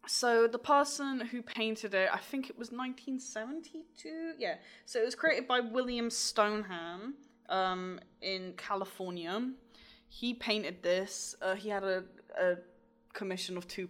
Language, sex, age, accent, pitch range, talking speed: English, female, 10-29, British, 190-240 Hz, 145 wpm